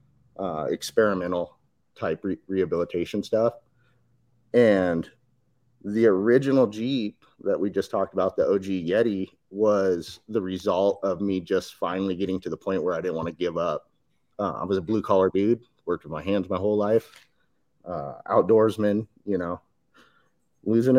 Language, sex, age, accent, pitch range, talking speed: English, male, 30-49, American, 95-110 Hz, 155 wpm